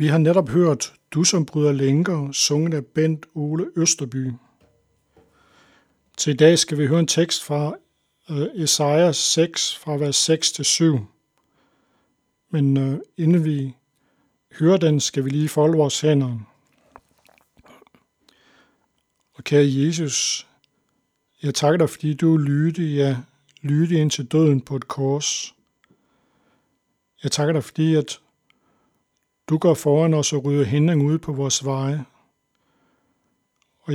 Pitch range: 140-160 Hz